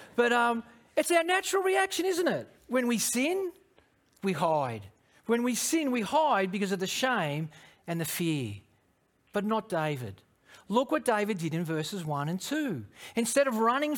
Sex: male